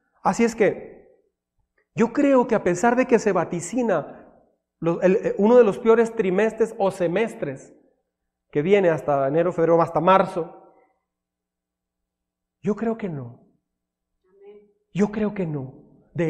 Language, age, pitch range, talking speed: Spanish, 40-59, 165-230 Hz, 135 wpm